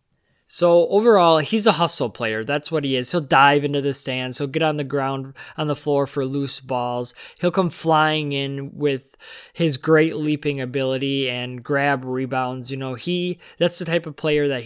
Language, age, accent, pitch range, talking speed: English, 20-39, American, 130-155 Hz, 190 wpm